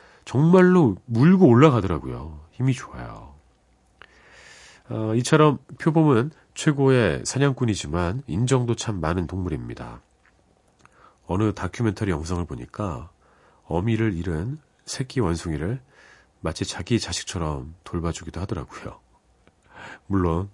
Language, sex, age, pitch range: Korean, male, 40-59, 85-140 Hz